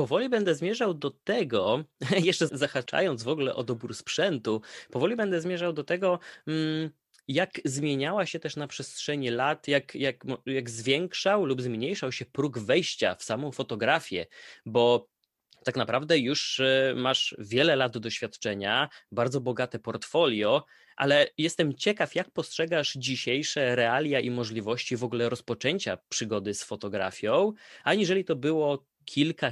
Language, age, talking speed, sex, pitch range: Polish, 20-39, 130 wpm, male, 120-155 Hz